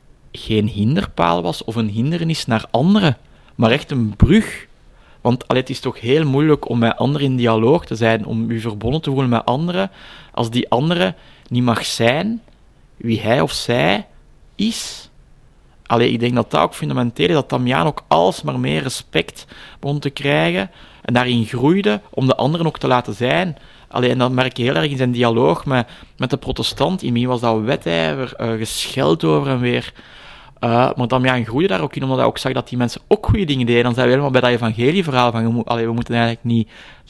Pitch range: 115-140 Hz